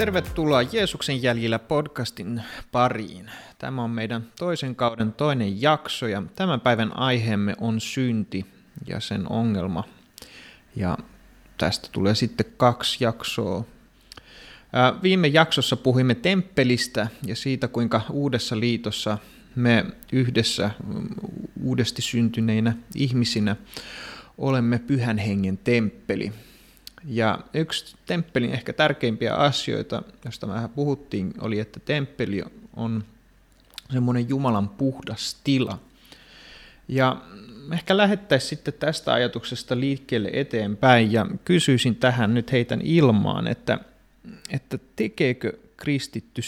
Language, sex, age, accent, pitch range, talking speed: Finnish, male, 30-49, native, 110-140 Hz, 105 wpm